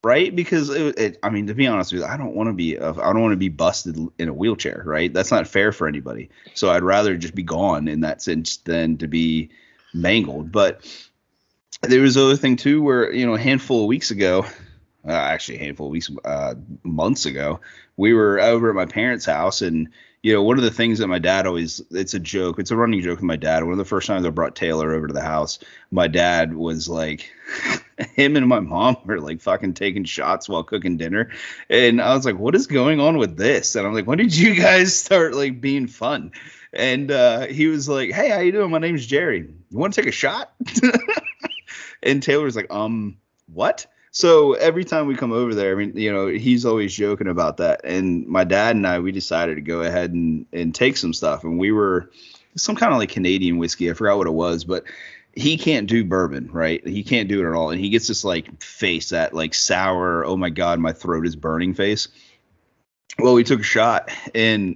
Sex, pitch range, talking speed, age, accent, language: male, 85-130 Hz, 225 wpm, 30-49, American, English